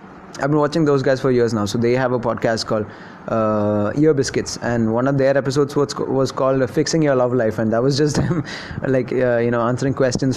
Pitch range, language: 120-150 Hz, English